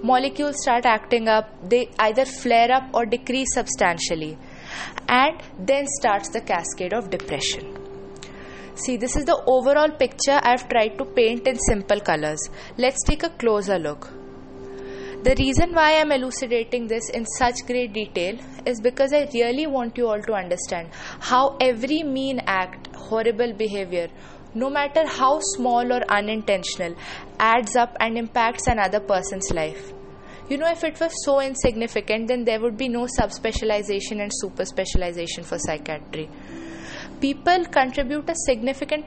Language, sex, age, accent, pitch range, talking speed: English, female, 20-39, Indian, 195-260 Hz, 150 wpm